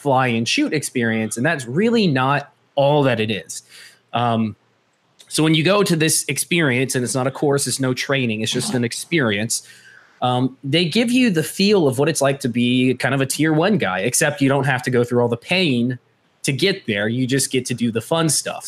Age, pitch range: 20-39, 120-150 Hz